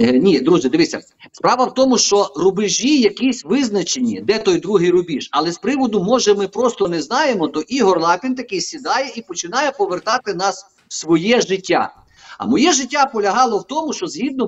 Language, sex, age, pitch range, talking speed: Ukrainian, male, 50-69, 195-270 Hz, 175 wpm